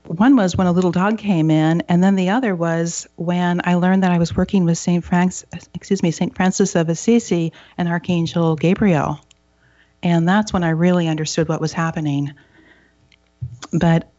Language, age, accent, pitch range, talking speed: English, 40-59, American, 160-190 Hz, 165 wpm